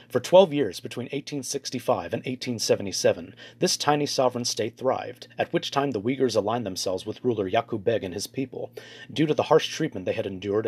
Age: 30-49